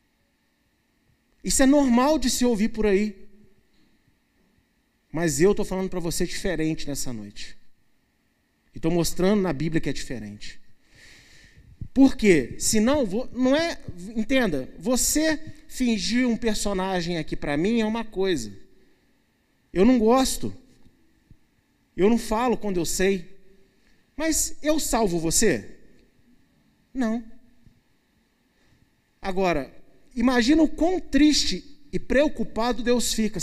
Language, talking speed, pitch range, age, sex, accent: Portuguese, 115 wpm, 175-250 Hz, 40-59, male, Brazilian